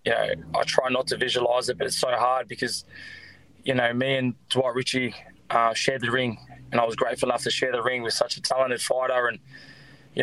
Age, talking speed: 20-39, 230 wpm